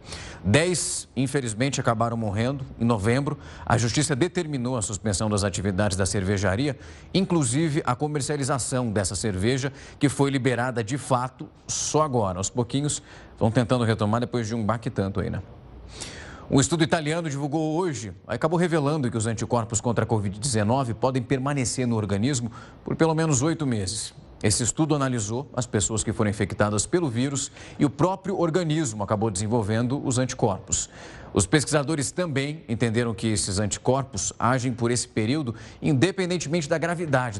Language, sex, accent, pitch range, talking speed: Portuguese, male, Brazilian, 110-140 Hz, 150 wpm